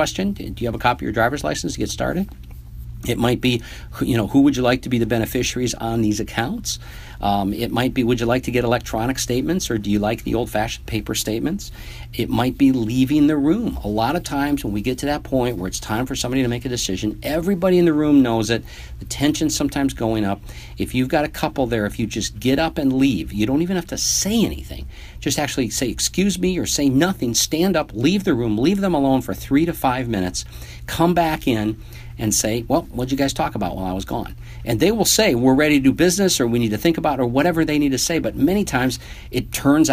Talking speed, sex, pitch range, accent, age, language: 250 wpm, male, 100-140 Hz, American, 50-69, English